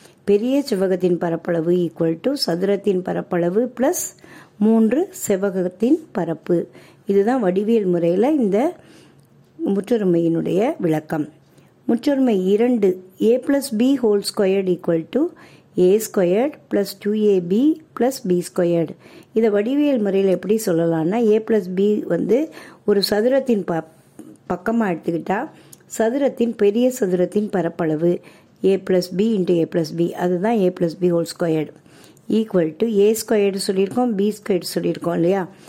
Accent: native